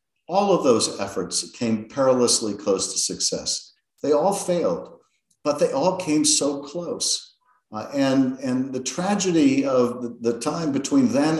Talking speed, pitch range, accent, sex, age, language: 155 wpm, 125-185 Hz, American, male, 50-69, English